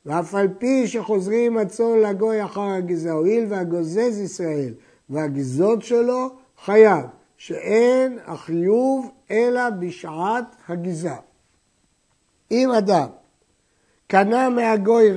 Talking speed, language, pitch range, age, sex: 90 wpm, Hebrew, 165-230 Hz, 60-79, male